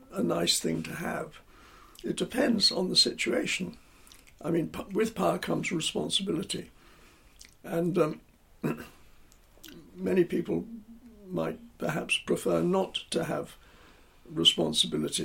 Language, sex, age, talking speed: English, male, 60-79, 105 wpm